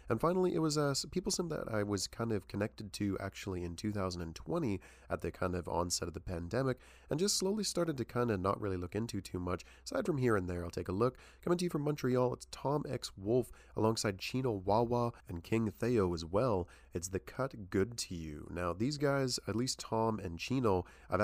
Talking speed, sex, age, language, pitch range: 225 wpm, male, 30-49, English, 90-120 Hz